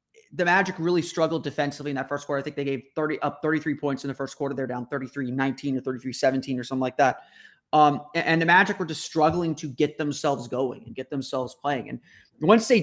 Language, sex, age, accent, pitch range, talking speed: English, male, 30-49, American, 135-160 Hz, 225 wpm